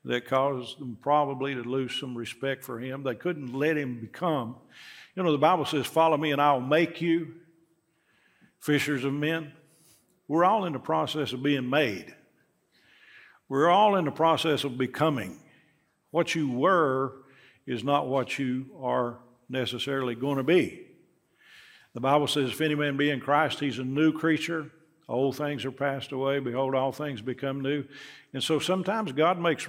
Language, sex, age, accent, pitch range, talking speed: English, male, 50-69, American, 135-160 Hz, 170 wpm